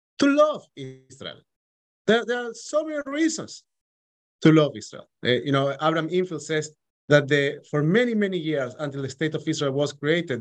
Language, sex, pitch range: English, male, 145-205 Hz